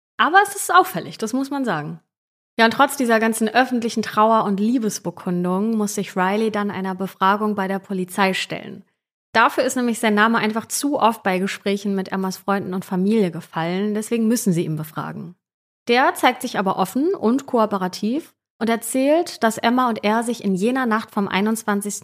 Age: 30-49